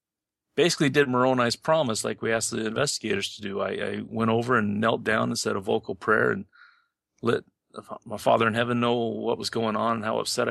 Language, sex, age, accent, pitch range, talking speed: English, male, 40-59, American, 105-120 Hz, 210 wpm